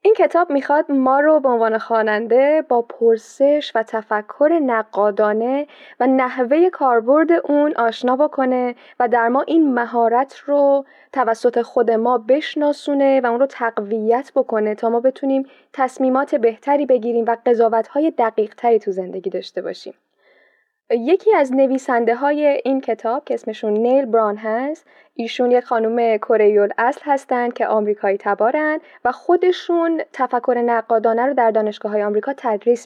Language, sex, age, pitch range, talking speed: Persian, female, 10-29, 225-280 Hz, 140 wpm